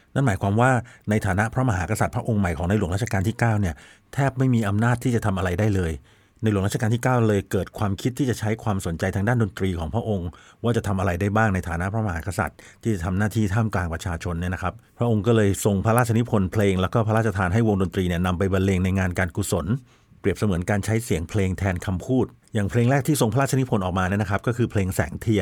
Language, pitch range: Thai, 95-115 Hz